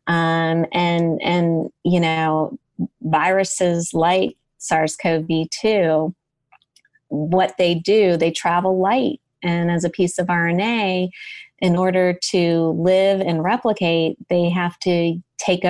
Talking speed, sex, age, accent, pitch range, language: 115 wpm, female, 30-49, American, 160-180 Hz, English